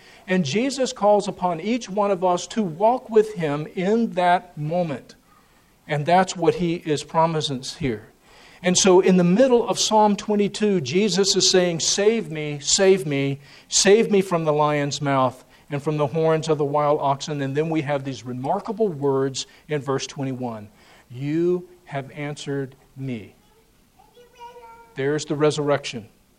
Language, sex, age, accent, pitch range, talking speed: English, male, 50-69, American, 135-185 Hz, 155 wpm